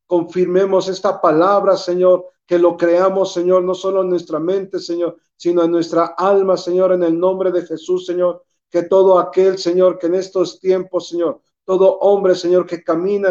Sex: male